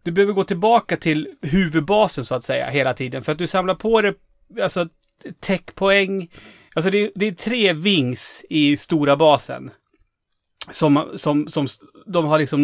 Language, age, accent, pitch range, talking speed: Swedish, 30-49, native, 140-175 Hz, 150 wpm